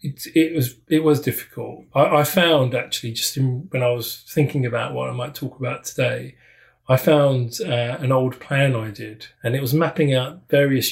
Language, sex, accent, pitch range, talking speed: English, male, British, 120-135 Hz, 205 wpm